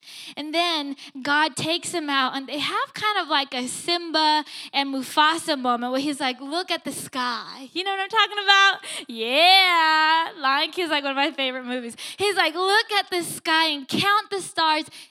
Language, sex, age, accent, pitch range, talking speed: English, female, 10-29, American, 250-330 Hz, 200 wpm